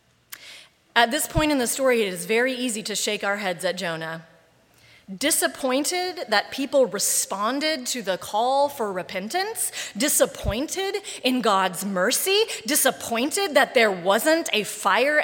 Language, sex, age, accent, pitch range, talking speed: English, female, 30-49, American, 205-280 Hz, 140 wpm